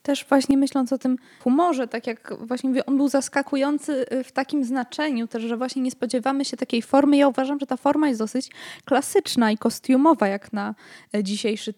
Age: 20-39